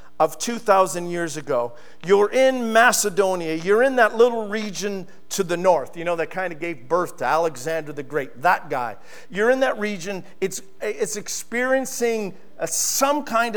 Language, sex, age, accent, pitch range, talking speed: English, male, 50-69, American, 160-220 Hz, 170 wpm